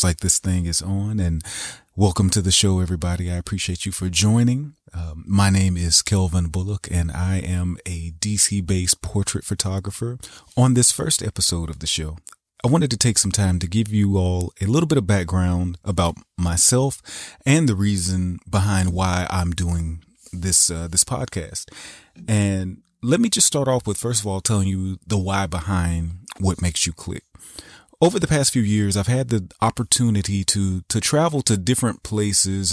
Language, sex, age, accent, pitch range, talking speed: English, male, 30-49, American, 90-115 Hz, 180 wpm